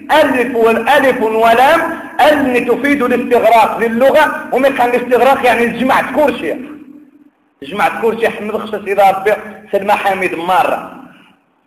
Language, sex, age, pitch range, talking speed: Arabic, male, 40-59, 190-255 Hz, 105 wpm